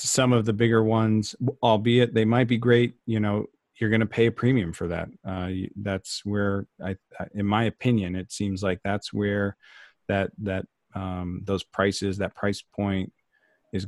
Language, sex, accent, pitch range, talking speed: English, male, American, 95-110 Hz, 175 wpm